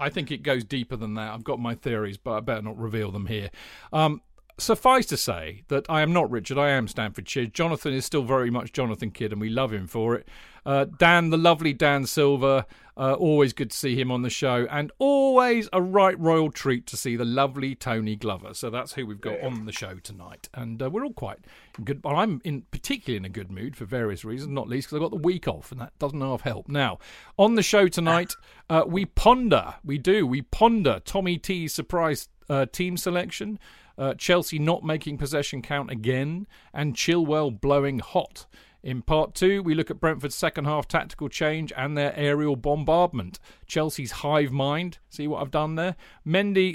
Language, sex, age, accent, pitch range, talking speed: English, male, 40-59, British, 125-160 Hz, 210 wpm